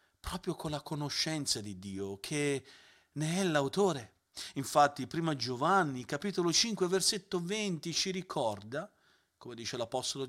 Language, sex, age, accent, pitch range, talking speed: Italian, male, 40-59, native, 120-175 Hz, 130 wpm